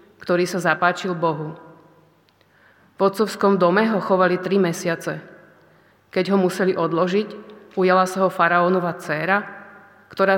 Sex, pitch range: female, 170-195 Hz